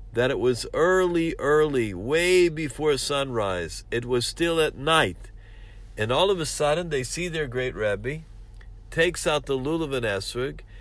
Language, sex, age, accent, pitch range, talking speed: English, male, 50-69, American, 105-165 Hz, 160 wpm